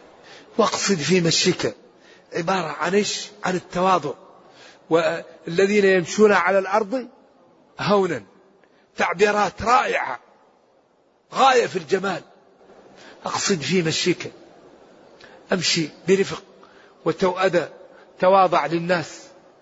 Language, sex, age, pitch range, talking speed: Arabic, male, 40-59, 170-205 Hz, 80 wpm